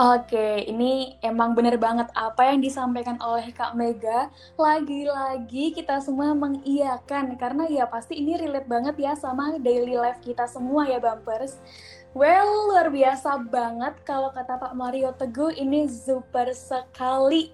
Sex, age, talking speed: female, 10-29, 145 wpm